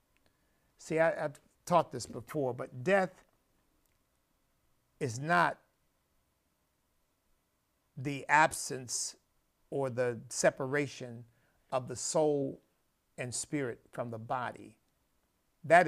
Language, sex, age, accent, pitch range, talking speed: English, male, 50-69, American, 130-155 Hz, 85 wpm